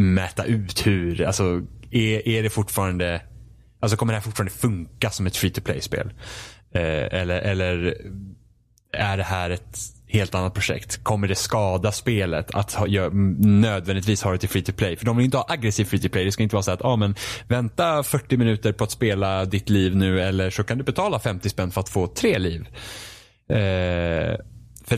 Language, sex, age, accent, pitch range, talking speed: Swedish, male, 20-39, Norwegian, 95-115 Hz, 200 wpm